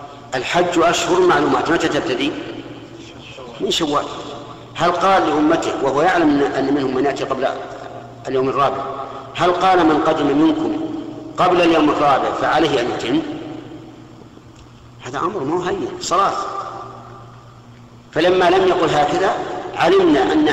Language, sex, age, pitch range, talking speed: Arabic, male, 50-69, 125-170 Hz, 120 wpm